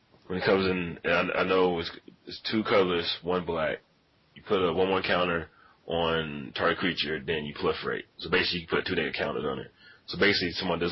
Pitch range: 80-90 Hz